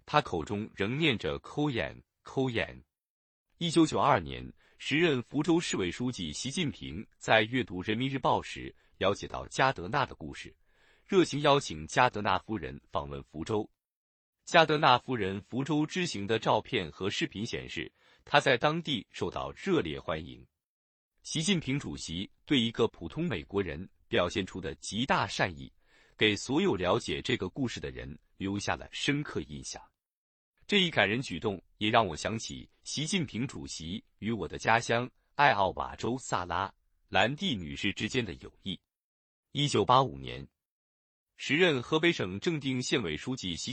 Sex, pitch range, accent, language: male, 90-145 Hz, native, Chinese